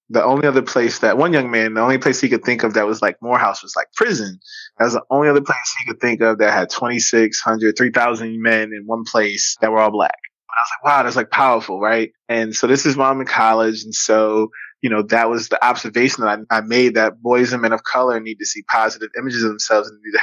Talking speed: 260 wpm